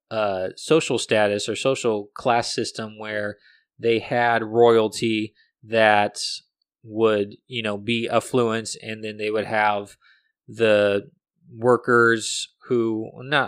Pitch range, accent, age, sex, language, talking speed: 105-120 Hz, American, 20-39, male, English, 115 wpm